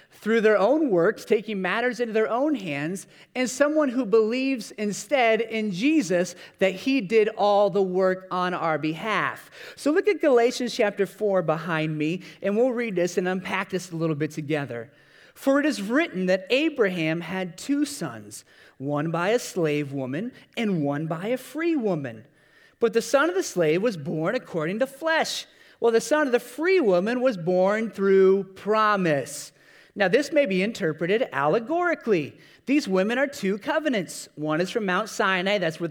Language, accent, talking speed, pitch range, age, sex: English, American, 175 wpm, 175-250 Hz, 30-49, male